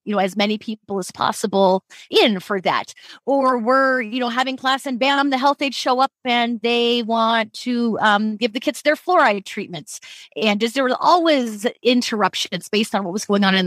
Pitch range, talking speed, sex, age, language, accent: 205-275 Hz, 205 wpm, female, 30-49, English, American